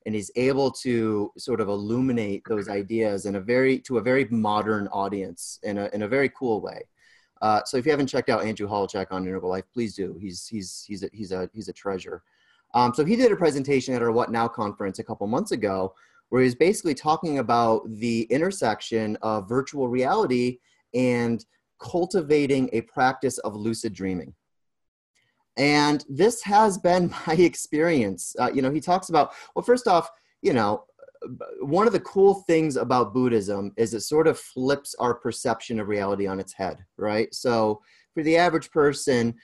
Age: 30-49